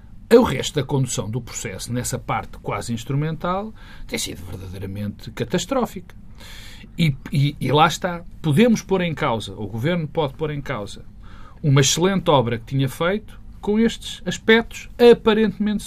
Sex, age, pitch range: male, 40-59, 105-160 Hz